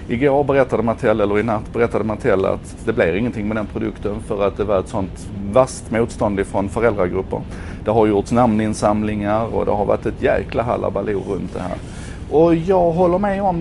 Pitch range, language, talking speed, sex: 90-120 Hz, Swedish, 195 wpm, male